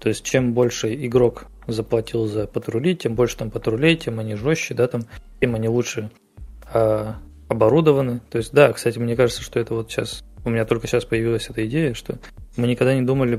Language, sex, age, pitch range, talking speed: Russian, male, 20-39, 110-125 Hz, 195 wpm